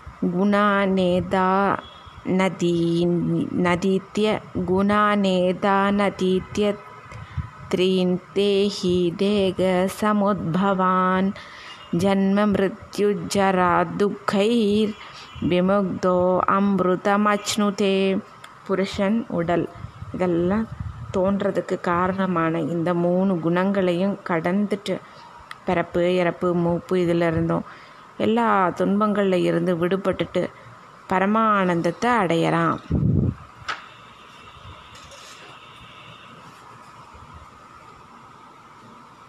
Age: 20-39